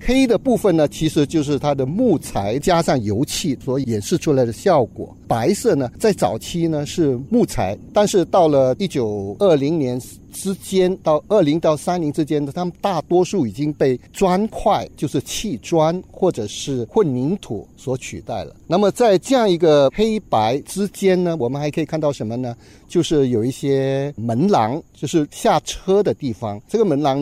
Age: 50-69